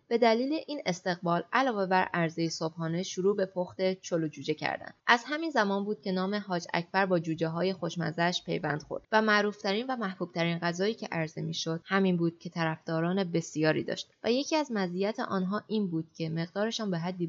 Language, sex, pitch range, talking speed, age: Persian, female, 165-205 Hz, 190 wpm, 20-39